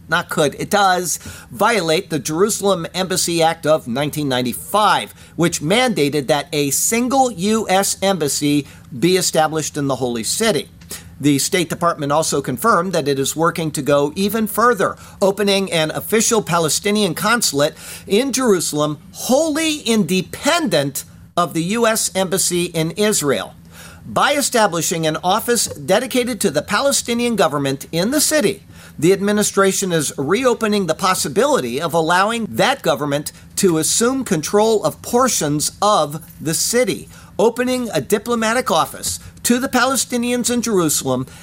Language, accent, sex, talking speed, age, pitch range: English, American, male, 130 wpm, 50-69, 155-220 Hz